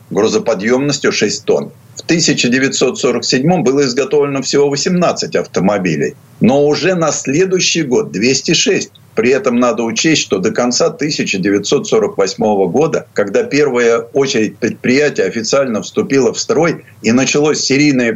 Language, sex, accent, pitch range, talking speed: Russian, male, native, 130-175 Hz, 120 wpm